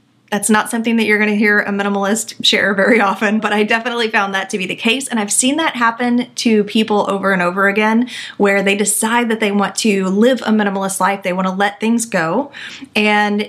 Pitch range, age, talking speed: 195-235 Hz, 30-49, 225 wpm